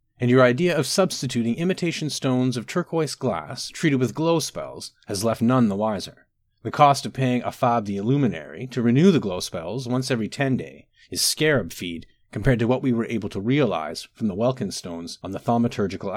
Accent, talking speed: American, 195 wpm